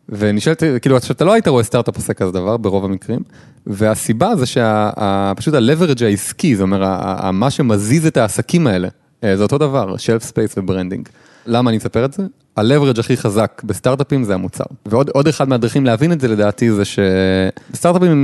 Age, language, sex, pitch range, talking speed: 30-49, English, male, 100-135 Hz, 145 wpm